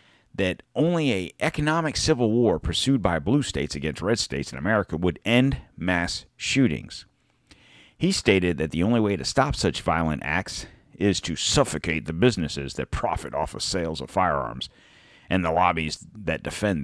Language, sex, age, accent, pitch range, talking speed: English, male, 50-69, American, 80-120 Hz, 170 wpm